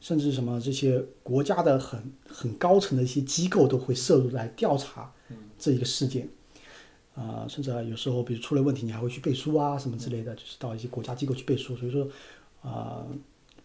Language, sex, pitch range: Chinese, male, 120-140 Hz